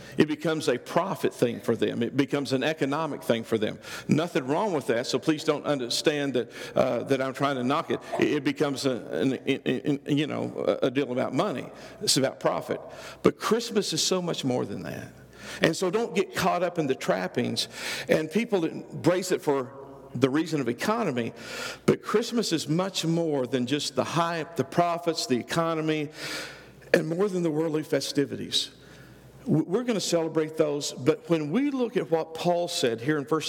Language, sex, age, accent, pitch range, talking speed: English, male, 50-69, American, 140-180 Hz, 190 wpm